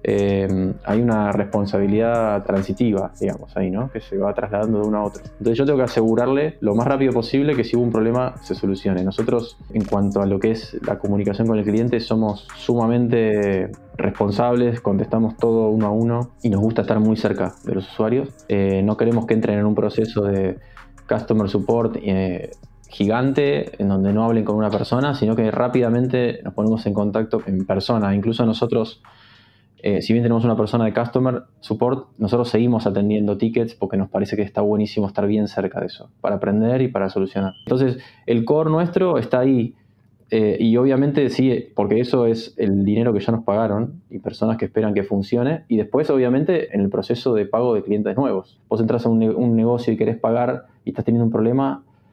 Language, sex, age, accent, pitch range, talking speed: Spanish, male, 20-39, Argentinian, 105-120 Hz, 200 wpm